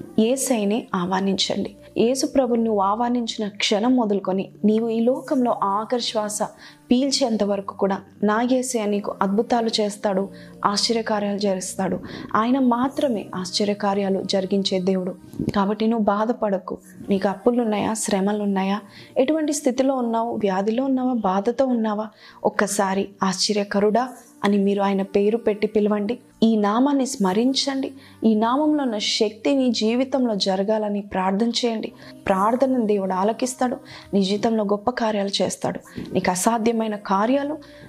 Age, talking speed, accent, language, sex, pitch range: 20-39, 110 wpm, native, Telugu, female, 200-240 Hz